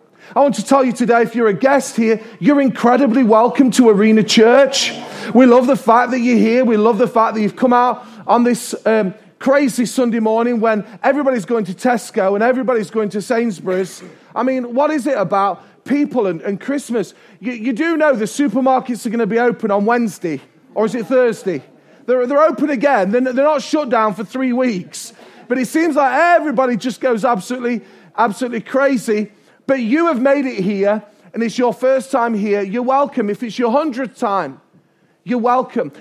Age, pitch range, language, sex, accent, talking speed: 30-49, 225-275 Hz, English, male, British, 195 wpm